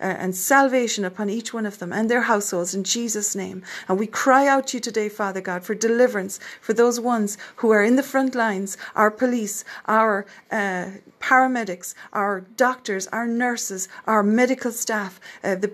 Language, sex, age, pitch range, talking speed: English, female, 40-59, 205-250 Hz, 180 wpm